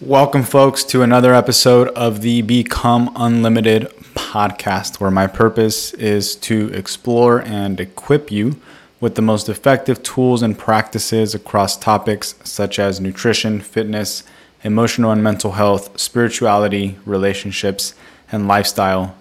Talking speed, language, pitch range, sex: 125 wpm, English, 100-115 Hz, male